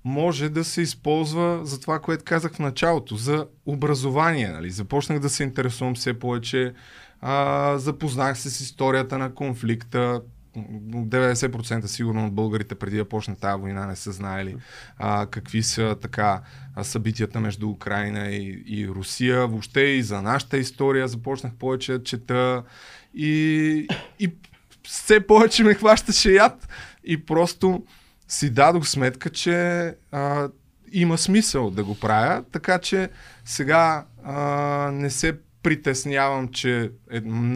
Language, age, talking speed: Bulgarian, 20-39, 135 wpm